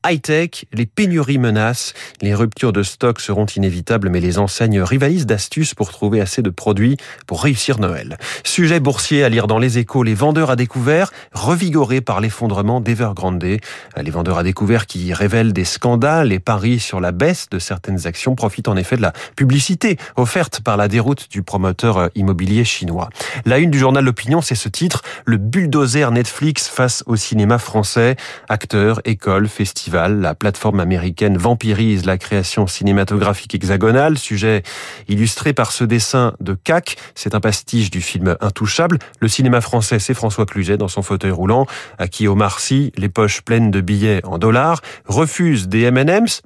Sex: male